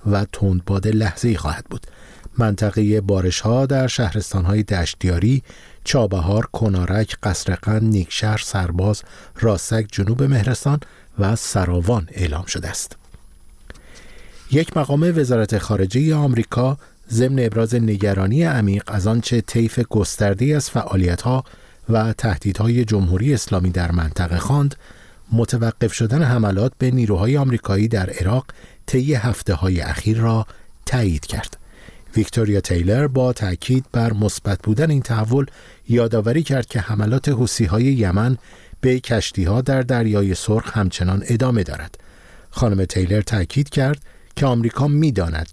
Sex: male